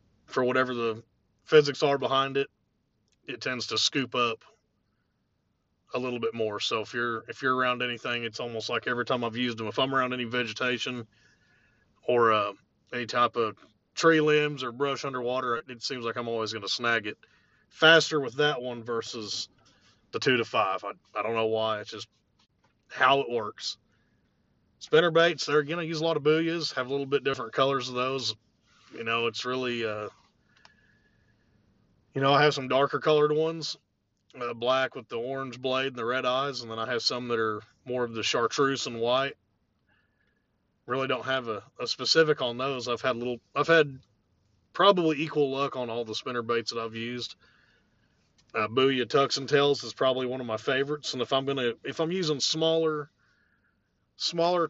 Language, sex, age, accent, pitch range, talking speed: English, male, 30-49, American, 115-140 Hz, 190 wpm